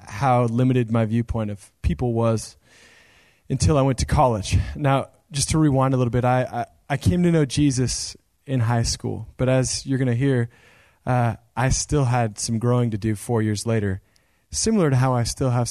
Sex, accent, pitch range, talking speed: male, American, 105-140 Hz, 200 wpm